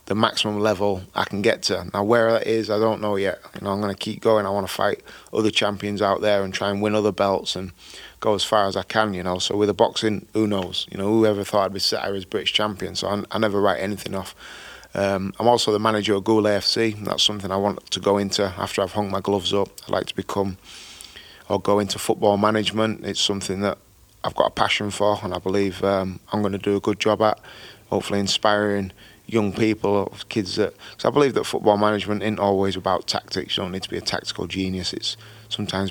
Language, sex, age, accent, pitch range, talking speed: English, male, 30-49, British, 95-105 Hz, 235 wpm